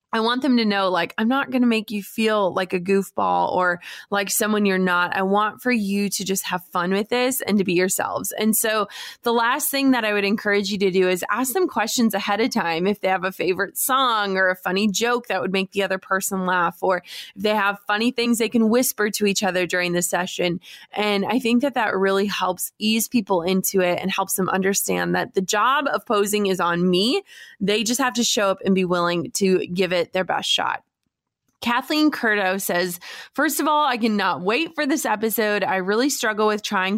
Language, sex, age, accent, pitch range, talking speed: English, female, 20-39, American, 190-230 Hz, 230 wpm